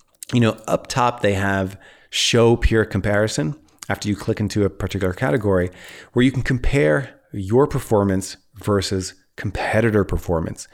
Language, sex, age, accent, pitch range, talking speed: English, male, 30-49, American, 95-120 Hz, 140 wpm